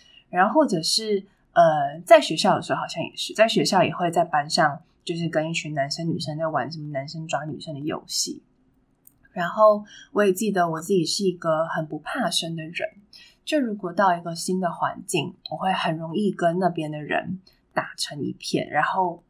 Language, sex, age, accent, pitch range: Chinese, female, 20-39, native, 160-200 Hz